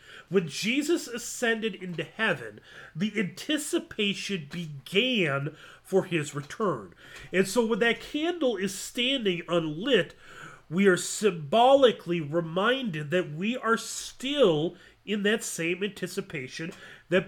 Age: 30-49